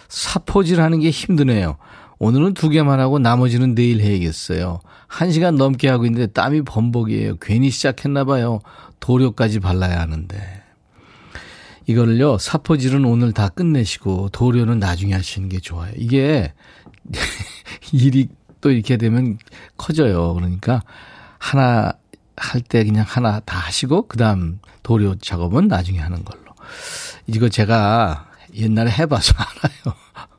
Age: 40-59